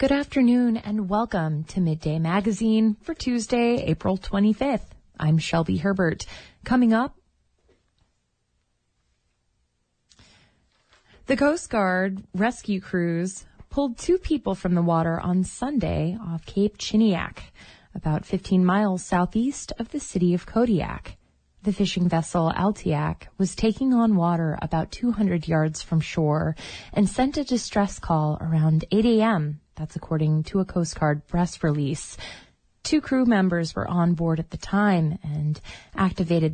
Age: 20-39